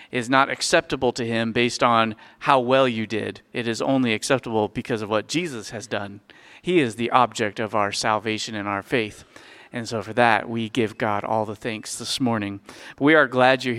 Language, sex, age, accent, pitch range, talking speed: English, male, 40-59, American, 115-140 Hz, 205 wpm